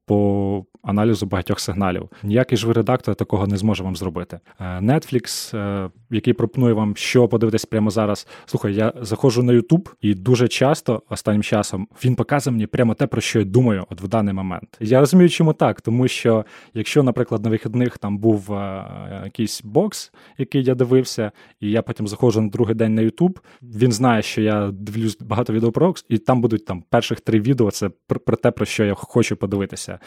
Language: Ukrainian